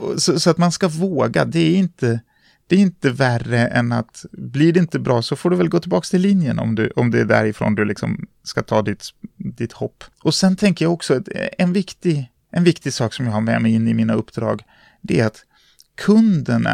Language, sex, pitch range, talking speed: Swedish, male, 120-175 Hz, 210 wpm